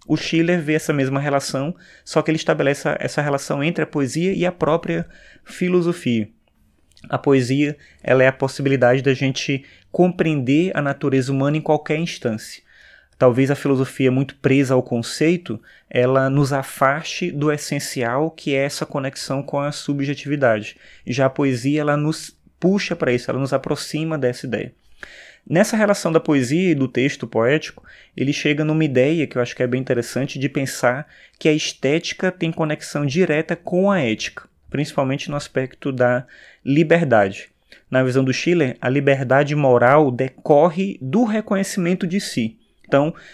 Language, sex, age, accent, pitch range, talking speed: Portuguese, male, 20-39, Brazilian, 135-170 Hz, 155 wpm